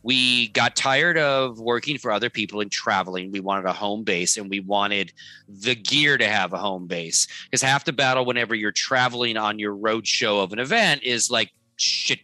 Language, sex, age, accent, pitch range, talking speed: English, male, 30-49, American, 120-180 Hz, 205 wpm